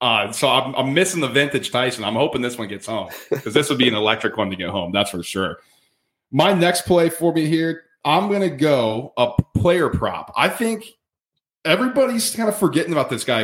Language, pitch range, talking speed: English, 115-150 Hz, 220 wpm